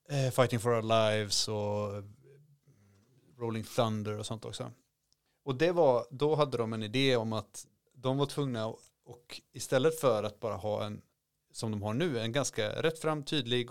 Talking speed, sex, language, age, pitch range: 170 wpm, male, Swedish, 30-49, 110-130 Hz